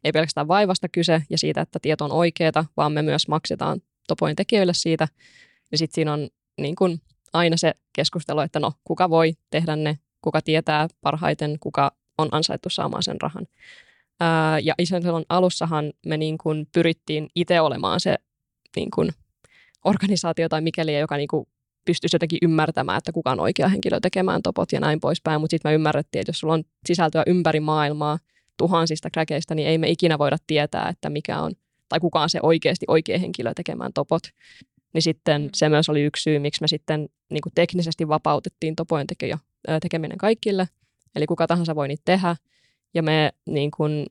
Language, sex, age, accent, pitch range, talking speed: Finnish, female, 20-39, native, 150-170 Hz, 175 wpm